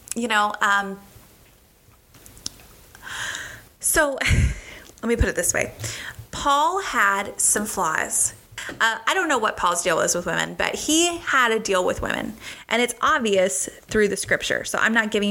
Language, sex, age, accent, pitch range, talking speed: English, female, 20-39, American, 185-240 Hz, 160 wpm